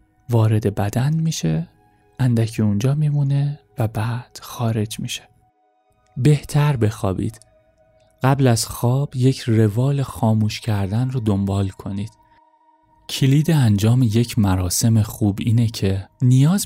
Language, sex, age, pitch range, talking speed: Persian, male, 30-49, 105-130 Hz, 110 wpm